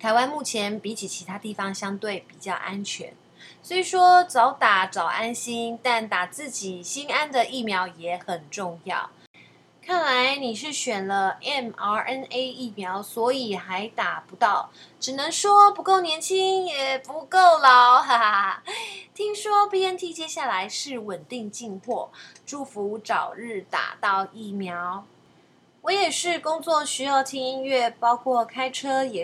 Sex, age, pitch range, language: female, 20-39, 200-280 Hz, Chinese